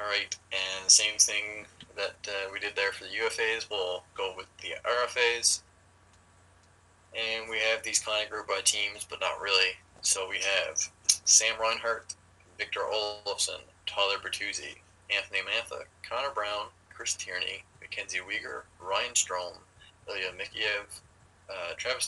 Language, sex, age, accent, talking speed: English, male, 20-39, American, 145 wpm